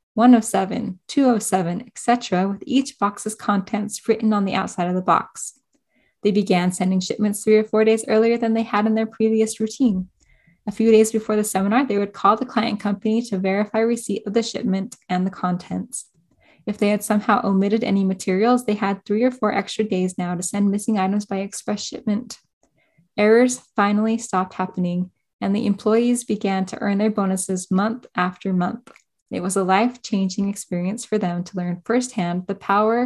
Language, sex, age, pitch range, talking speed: English, female, 10-29, 190-225 Hz, 180 wpm